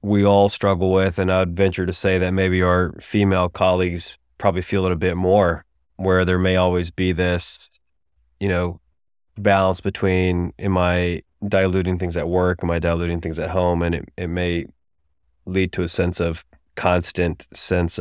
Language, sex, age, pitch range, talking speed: English, male, 30-49, 85-95 Hz, 175 wpm